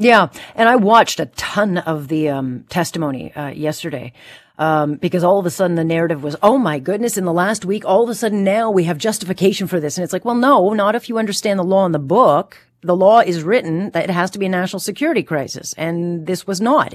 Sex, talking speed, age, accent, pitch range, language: female, 245 wpm, 40-59, American, 160-205 Hz, English